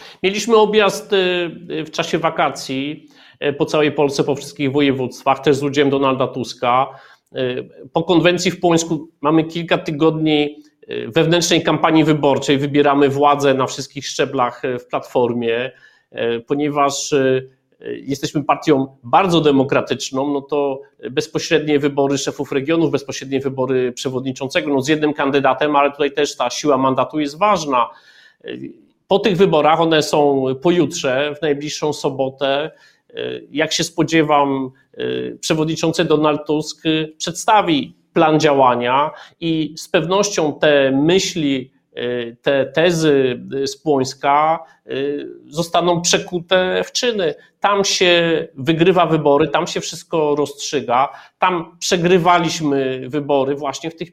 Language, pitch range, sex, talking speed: Polish, 140-170 Hz, male, 115 wpm